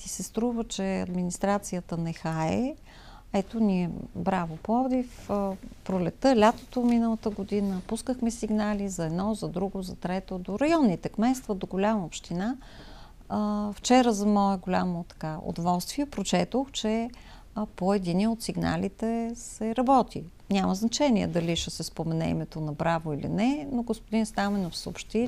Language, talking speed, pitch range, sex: Bulgarian, 140 wpm, 190-225 Hz, female